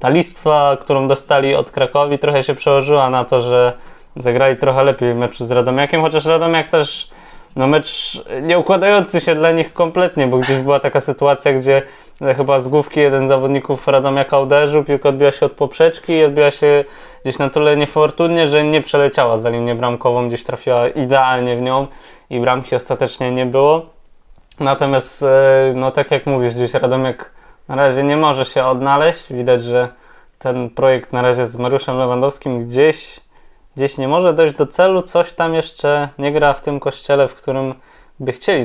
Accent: native